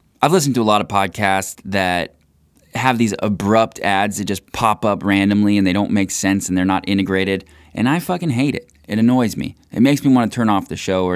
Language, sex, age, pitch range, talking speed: English, male, 20-39, 90-115 Hz, 235 wpm